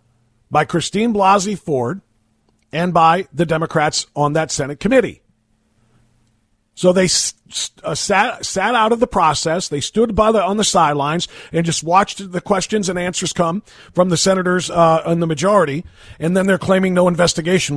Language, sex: English, male